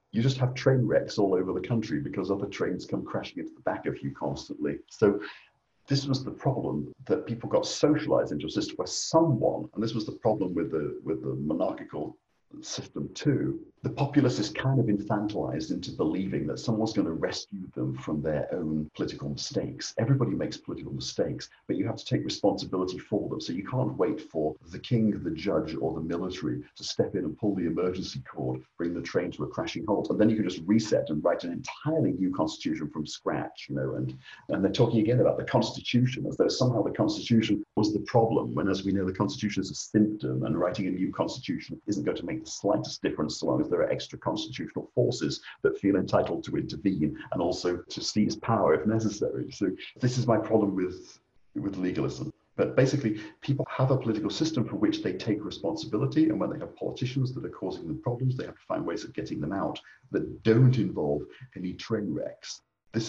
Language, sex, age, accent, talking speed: English, male, 50-69, British, 210 wpm